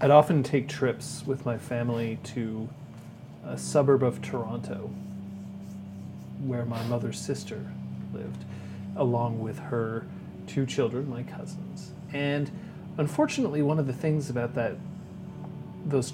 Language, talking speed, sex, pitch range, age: English, 125 wpm, male, 115-155 Hz, 30-49